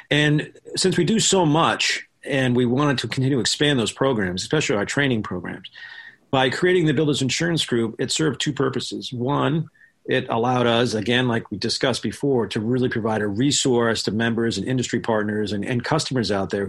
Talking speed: 190 wpm